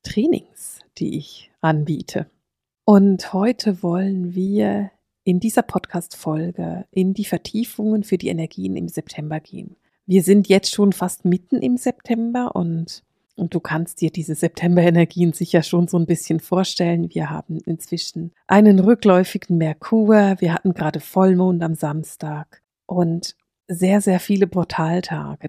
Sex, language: female, German